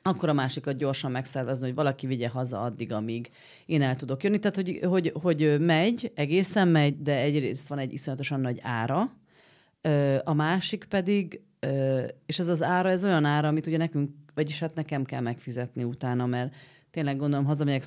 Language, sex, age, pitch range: Hungarian, female, 30-49, 125-160 Hz